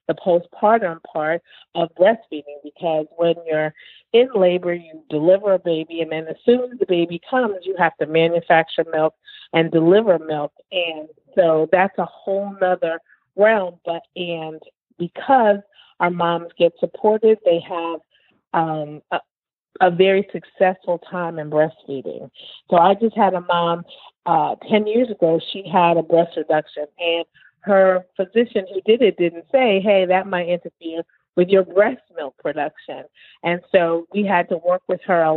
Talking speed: 160 wpm